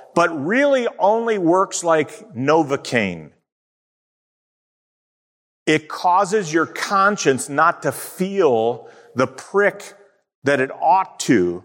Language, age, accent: English, 40-59, American